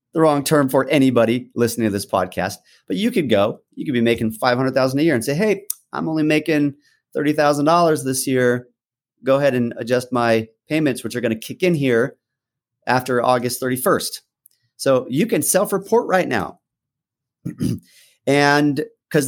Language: English